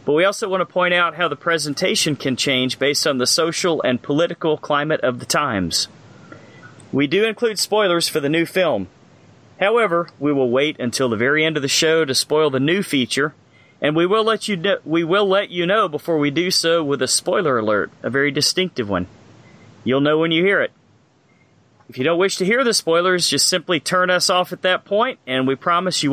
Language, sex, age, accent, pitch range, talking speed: English, male, 40-59, American, 135-175 Hz, 210 wpm